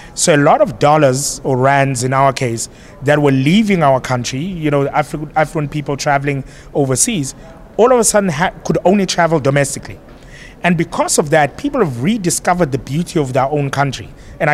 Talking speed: 180 wpm